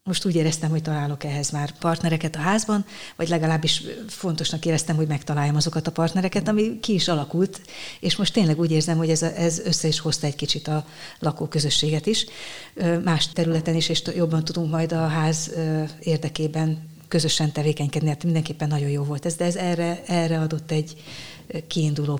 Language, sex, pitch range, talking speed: Hungarian, female, 155-170 Hz, 170 wpm